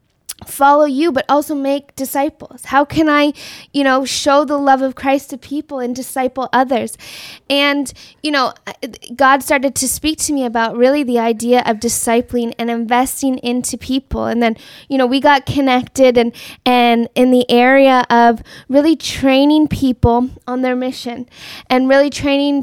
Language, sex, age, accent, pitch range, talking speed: English, female, 10-29, American, 245-275 Hz, 165 wpm